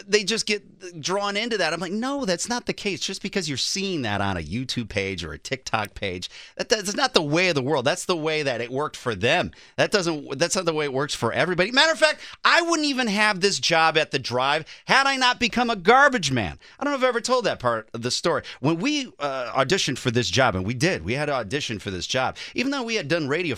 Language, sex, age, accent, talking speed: English, male, 30-49, American, 270 wpm